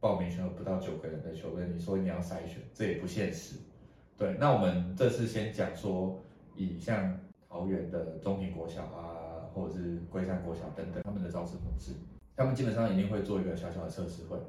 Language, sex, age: Chinese, male, 20-39